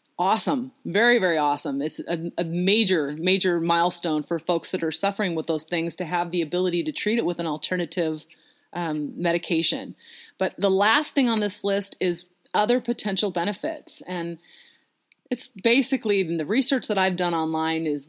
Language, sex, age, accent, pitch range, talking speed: English, female, 30-49, American, 170-215 Hz, 175 wpm